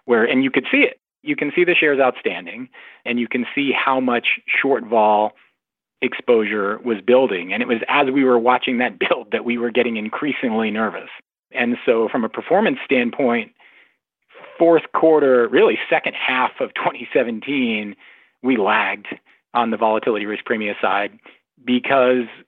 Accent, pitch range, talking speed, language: American, 115-135 Hz, 160 wpm, English